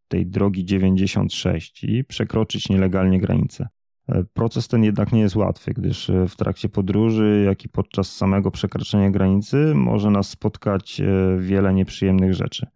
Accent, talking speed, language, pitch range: native, 135 wpm, Polish, 95-110 Hz